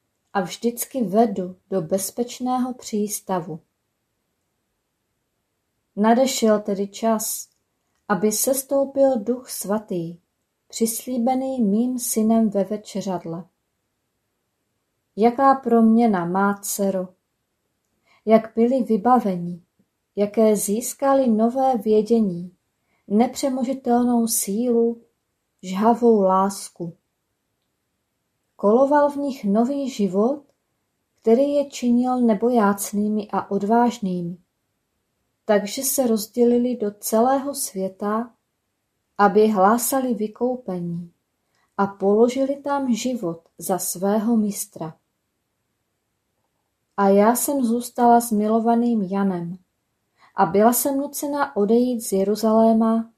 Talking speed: 85 wpm